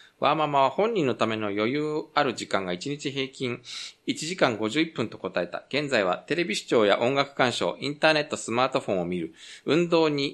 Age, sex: 20-39, male